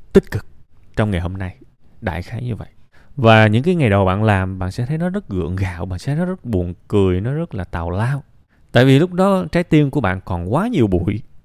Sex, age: male, 20-39